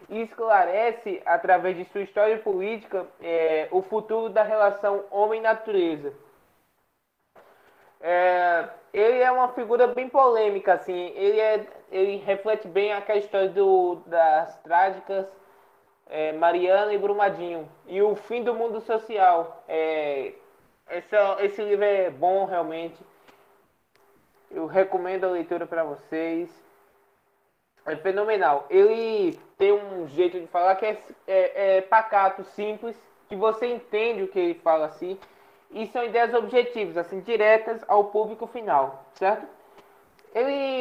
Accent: Brazilian